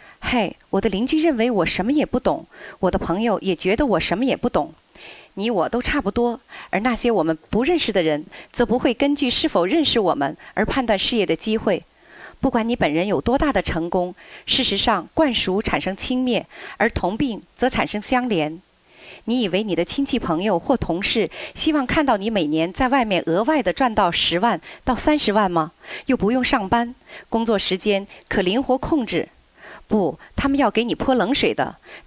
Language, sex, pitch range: Chinese, female, 195-270 Hz